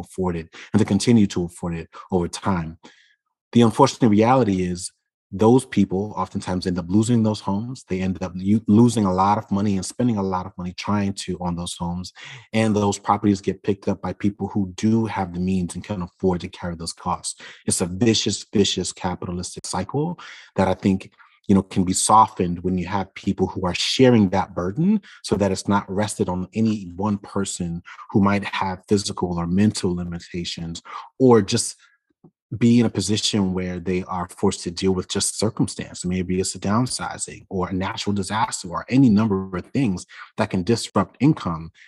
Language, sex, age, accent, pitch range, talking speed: English, male, 30-49, American, 90-110 Hz, 190 wpm